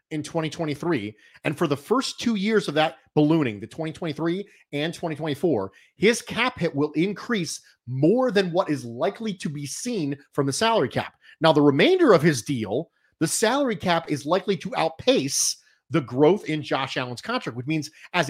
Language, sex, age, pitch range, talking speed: English, male, 30-49, 145-195 Hz, 175 wpm